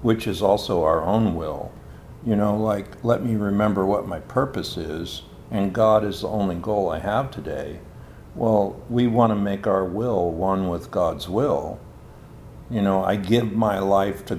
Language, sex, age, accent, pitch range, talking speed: English, male, 60-79, American, 90-110 Hz, 180 wpm